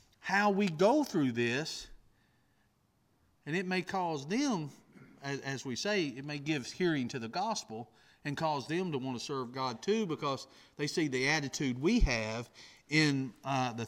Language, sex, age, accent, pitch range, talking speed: English, male, 40-59, American, 130-190 Hz, 170 wpm